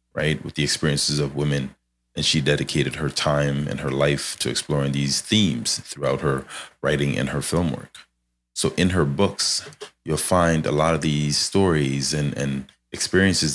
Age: 30-49